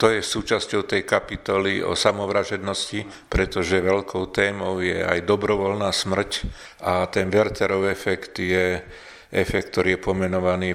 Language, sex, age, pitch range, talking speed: Slovak, male, 50-69, 95-100 Hz, 130 wpm